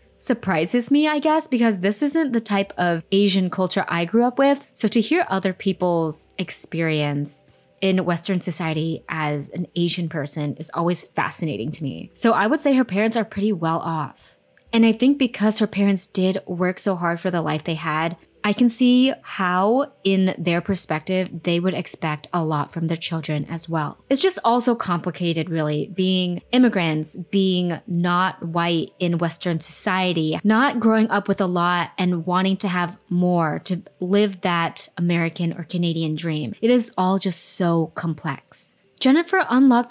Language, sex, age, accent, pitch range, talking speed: English, female, 20-39, American, 170-215 Hz, 175 wpm